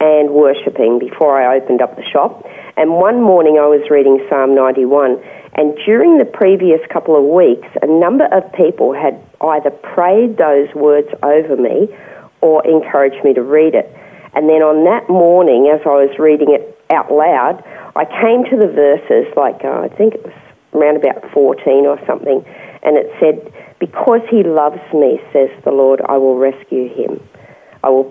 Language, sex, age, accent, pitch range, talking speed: English, female, 40-59, Australian, 140-185 Hz, 180 wpm